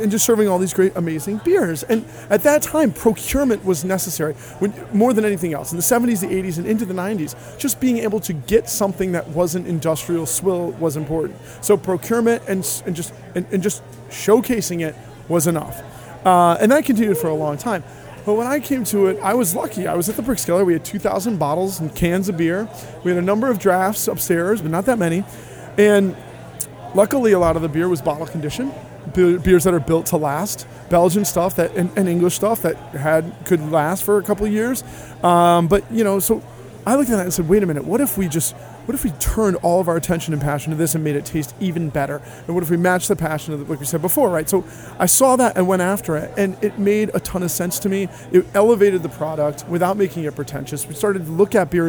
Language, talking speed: English, 240 wpm